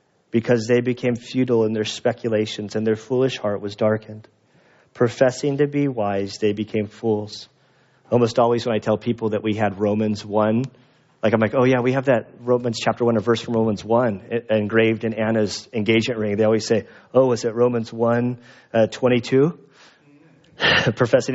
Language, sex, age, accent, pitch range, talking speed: English, male, 40-59, American, 110-135 Hz, 175 wpm